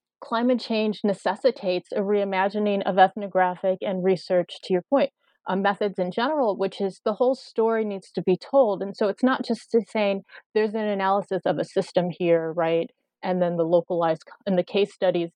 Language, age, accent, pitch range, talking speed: English, 30-49, American, 180-210 Hz, 185 wpm